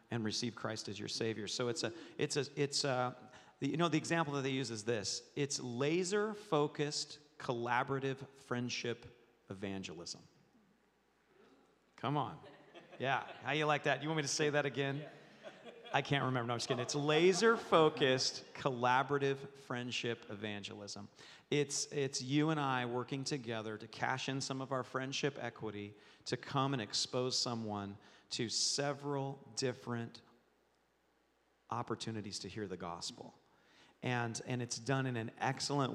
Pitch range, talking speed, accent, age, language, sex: 115-140 Hz, 150 wpm, American, 40-59, English, male